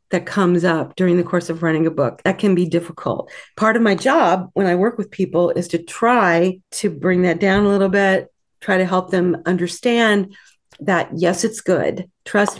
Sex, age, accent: female, 40-59, American